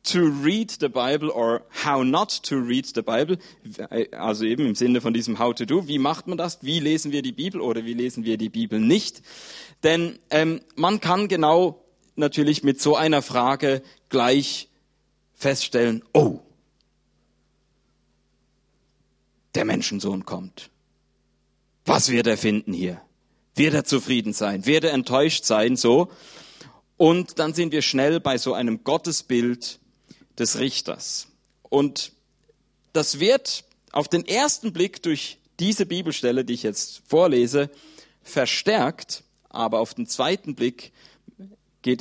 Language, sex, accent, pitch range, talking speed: German, male, German, 115-175 Hz, 140 wpm